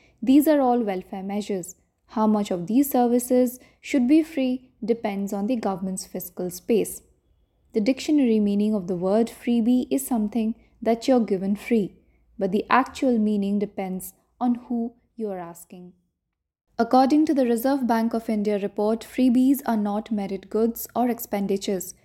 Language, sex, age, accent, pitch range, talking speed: English, female, 10-29, Indian, 200-245 Hz, 160 wpm